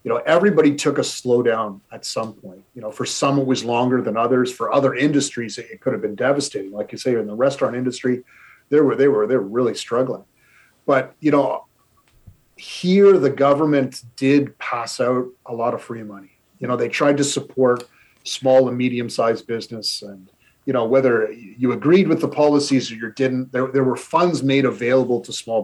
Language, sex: English, male